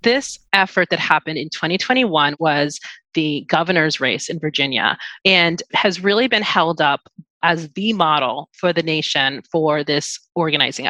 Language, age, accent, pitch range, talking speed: English, 30-49, American, 160-200 Hz, 150 wpm